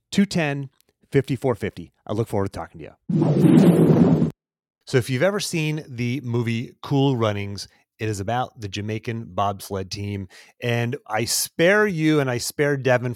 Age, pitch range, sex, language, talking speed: 30-49, 105-140 Hz, male, English, 140 wpm